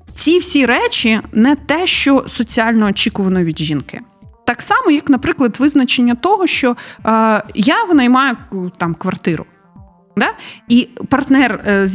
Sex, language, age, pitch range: female, Ukrainian, 30-49, 190-250 Hz